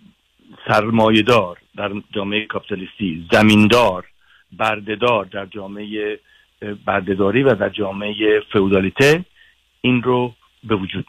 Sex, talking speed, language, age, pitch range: male, 95 wpm, Persian, 50-69, 105-125 Hz